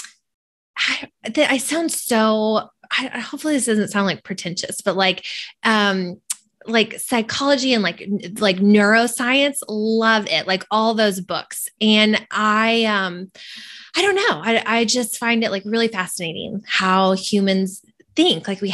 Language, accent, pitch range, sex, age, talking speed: English, American, 195-235 Hz, female, 20-39, 145 wpm